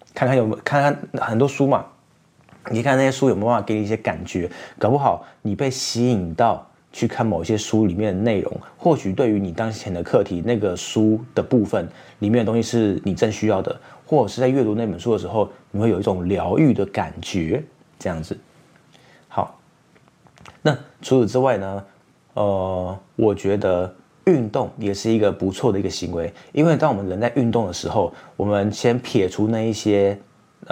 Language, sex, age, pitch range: Chinese, male, 20-39, 100-120 Hz